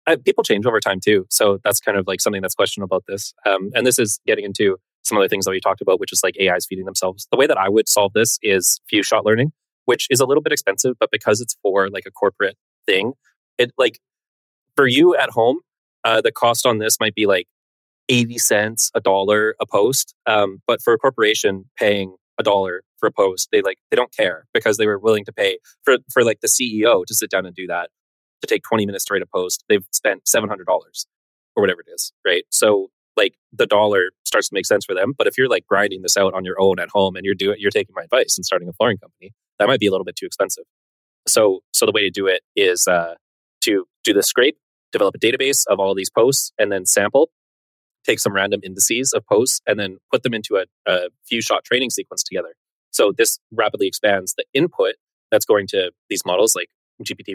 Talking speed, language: 240 wpm, English